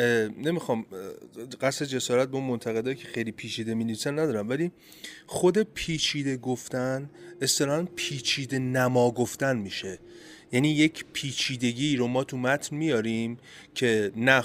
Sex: male